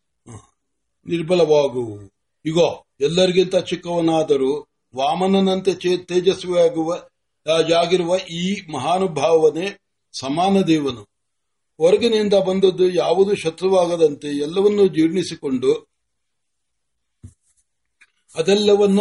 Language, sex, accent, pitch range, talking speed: Marathi, male, native, 155-195 Hz, 40 wpm